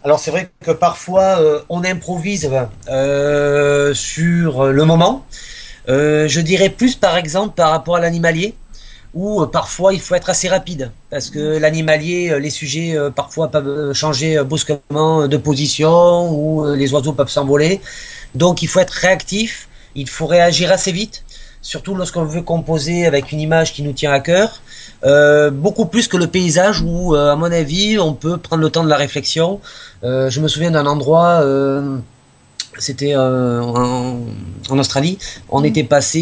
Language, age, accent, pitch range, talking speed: French, 30-49, French, 140-170 Hz, 170 wpm